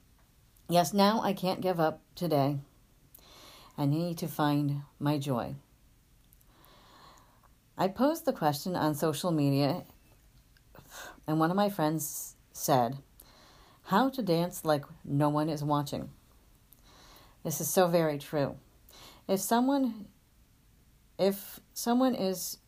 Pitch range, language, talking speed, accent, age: 140-185 Hz, English, 115 wpm, American, 40-59